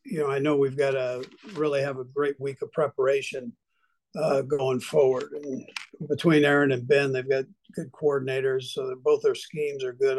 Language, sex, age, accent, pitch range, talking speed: English, male, 50-69, American, 130-155 Hz, 190 wpm